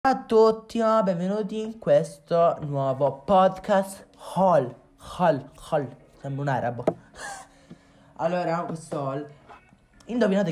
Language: Italian